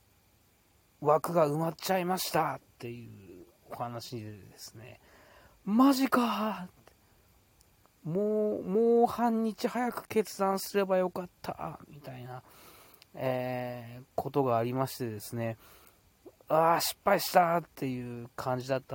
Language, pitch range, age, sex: Japanese, 115-155 Hz, 40-59, male